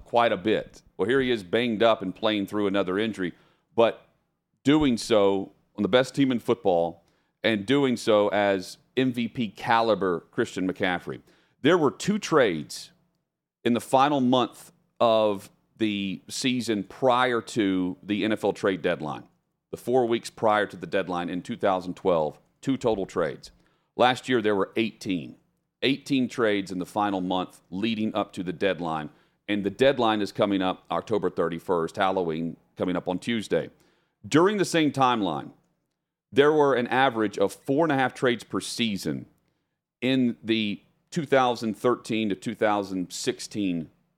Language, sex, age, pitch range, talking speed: English, male, 40-59, 100-130 Hz, 150 wpm